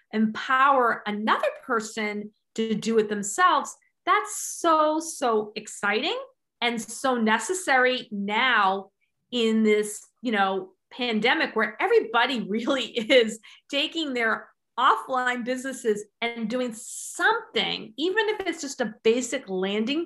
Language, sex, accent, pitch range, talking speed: English, female, American, 225-335 Hz, 115 wpm